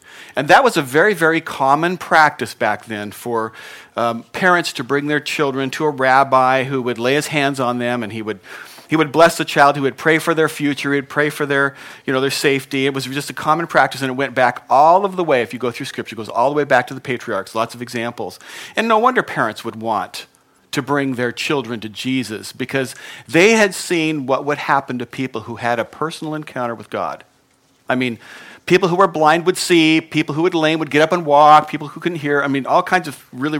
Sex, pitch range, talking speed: male, 125-160 Hz, 245 wpm